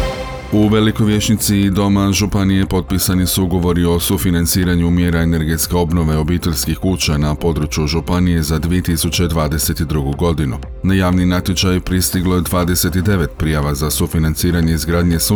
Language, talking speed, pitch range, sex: Croatian, 125 wpm, 80-90 Hz, male